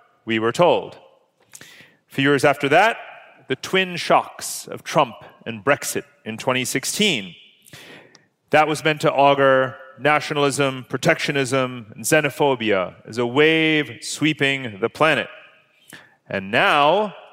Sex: male